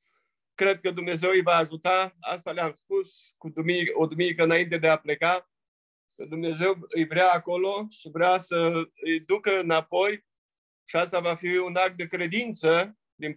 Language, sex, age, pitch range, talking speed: Romanian, male, 50-69, 160-185 Hz, 165 wpm